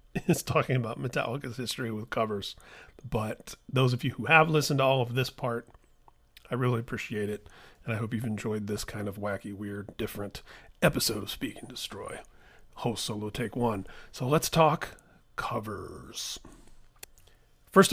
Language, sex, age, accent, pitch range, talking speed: English, male, 40-59, American, 115-150 Hz, 160 wpm